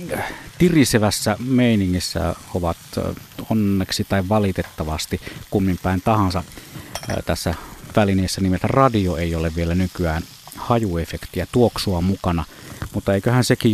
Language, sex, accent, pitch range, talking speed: Finnish, male, native, 95-120 Hz, 95 wpm